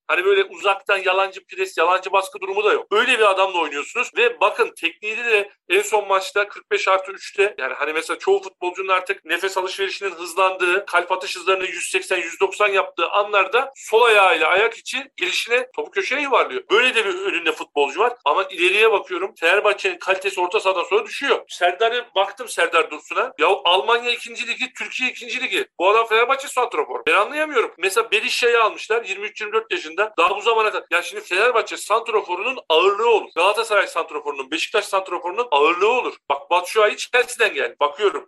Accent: native